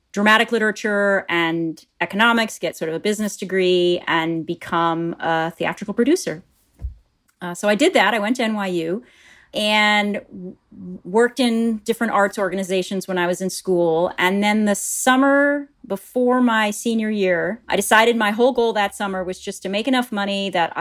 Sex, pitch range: female, 170-215 Hz